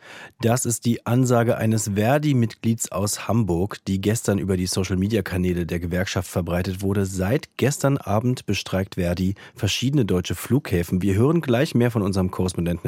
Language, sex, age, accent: German, male, 40-59, German